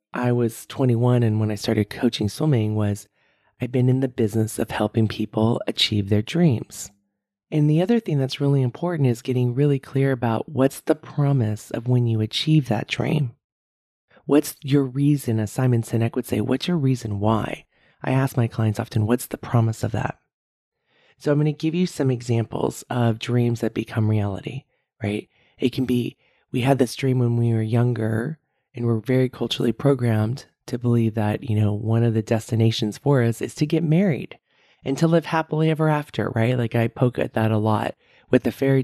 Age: 30-49